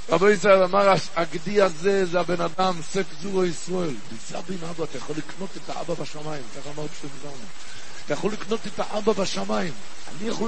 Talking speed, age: 185 wpm, 60-79